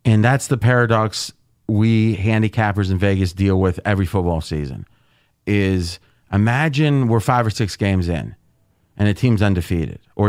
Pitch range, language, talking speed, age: 105-145 Hz, English, 150 wpm, 30-49